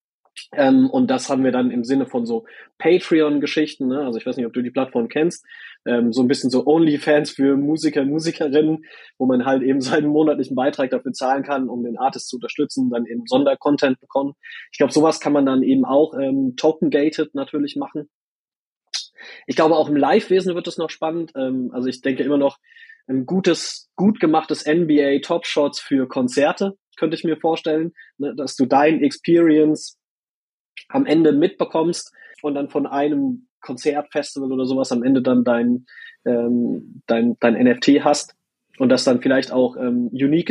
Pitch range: 130-165 Hz